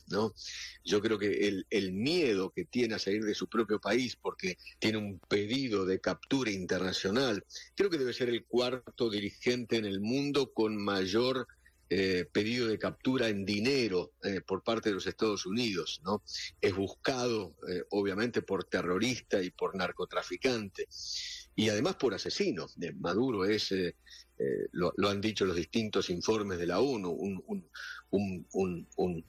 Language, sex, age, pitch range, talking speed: English, male, 50-69, 95-125 Hz, 155 wpm